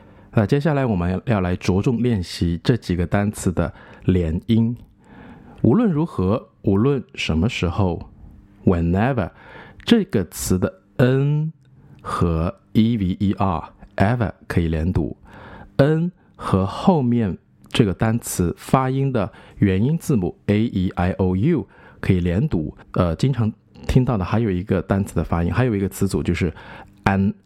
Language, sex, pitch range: Chinese, male, 95-120 Hz